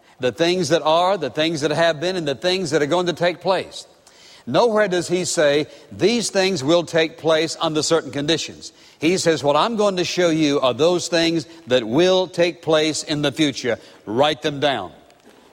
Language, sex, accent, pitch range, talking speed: English, male, American, 145-180 Hz, 195 wpm